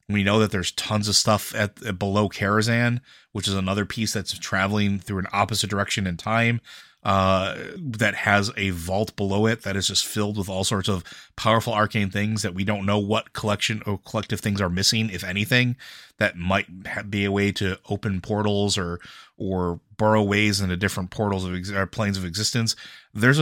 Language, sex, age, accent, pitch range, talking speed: English, male, 30-49, American, 95-115 Hz, 195 wpm